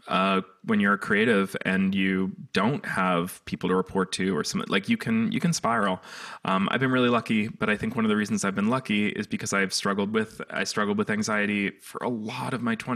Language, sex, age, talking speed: English, male, 20-39, 230 wpm